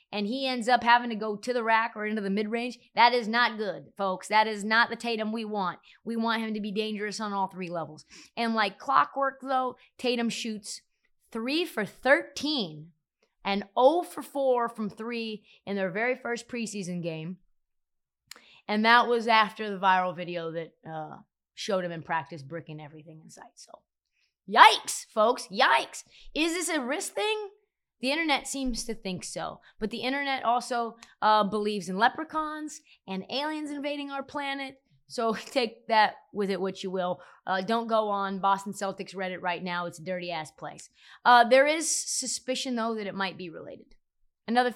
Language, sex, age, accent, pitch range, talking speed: English, female, 30-49, American, 195-250 Hz, 180 wpm